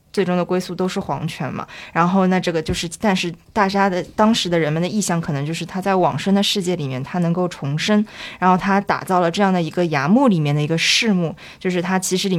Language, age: Chinese, 20-39